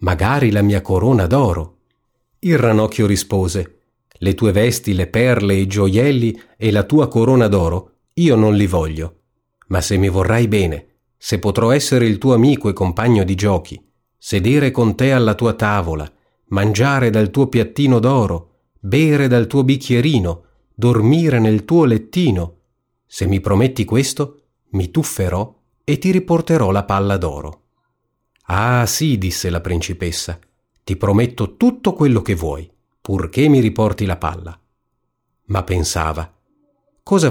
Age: 40-59